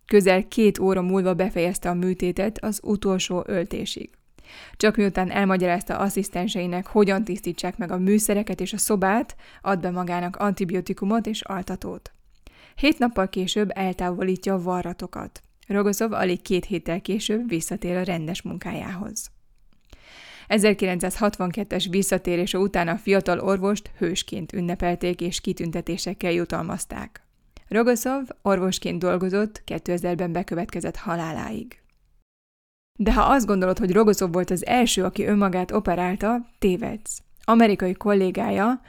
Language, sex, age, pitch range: Hungarian, female, 20-39, 180-210 Hz